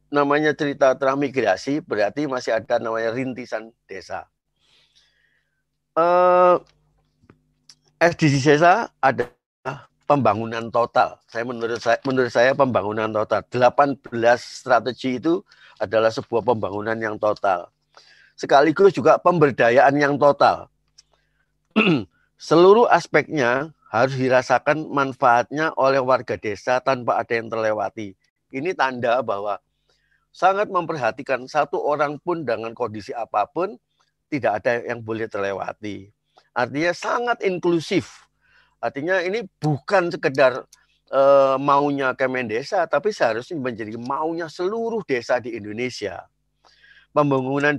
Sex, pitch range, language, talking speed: male, 120-150 Hz, Indonesian, 105 wpm